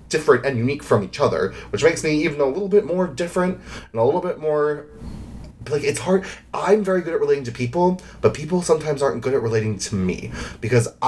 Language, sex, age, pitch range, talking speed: English, male, 20-39, 115-185 Hz, 215 wpm